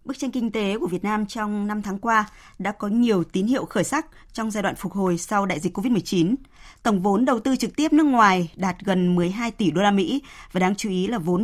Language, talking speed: Vietnamese, 250 wpm